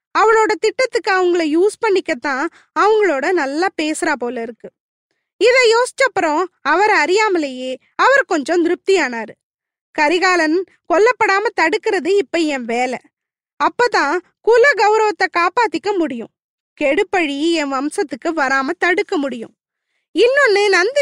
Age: 20-39